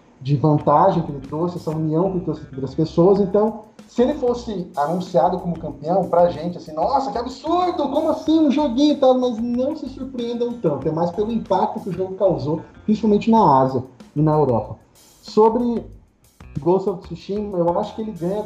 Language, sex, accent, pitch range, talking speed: Portuguese, male, Brazilian, 155-205 Hz, 195 wpm